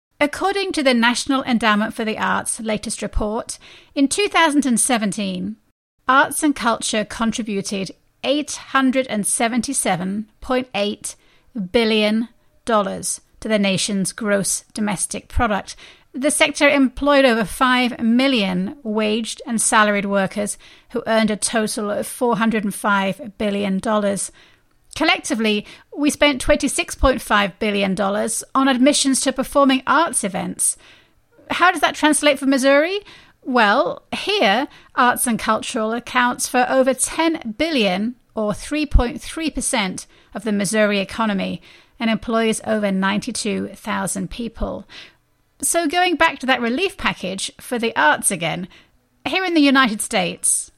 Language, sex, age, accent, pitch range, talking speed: English, female, 30-49, British, 210-275 Hz, 115 wpm